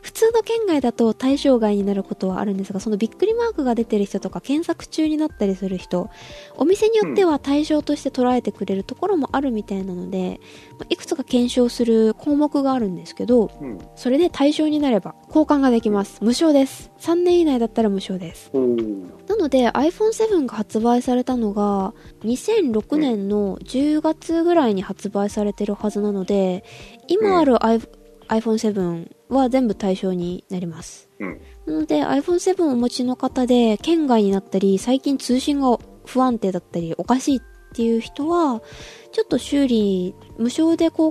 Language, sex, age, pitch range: Japanese, female, 20-39, 200-295 Hz